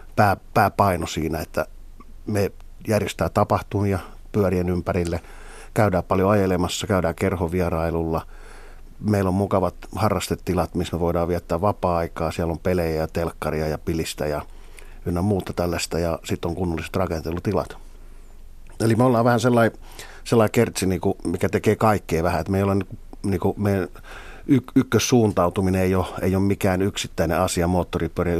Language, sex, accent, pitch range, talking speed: Finnish, male, native, 85-100 Hz, 125 wpm